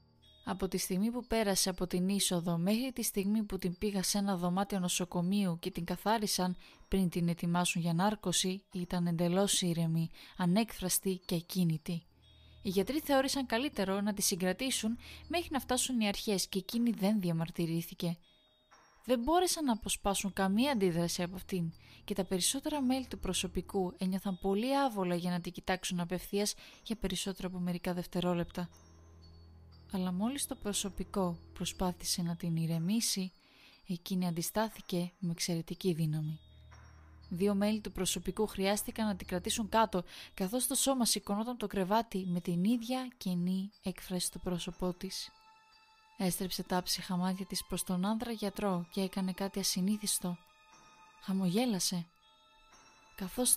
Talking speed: 140 wpm